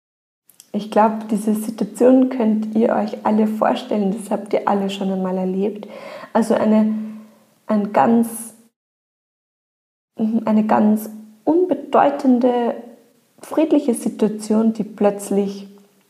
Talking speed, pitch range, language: 100 wpm, 205-255 Hz, German